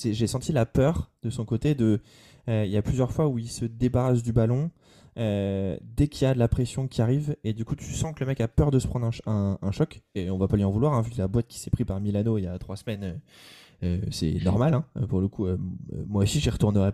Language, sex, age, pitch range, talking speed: French, male, 20-39, 100-125 Hz, 295 wpm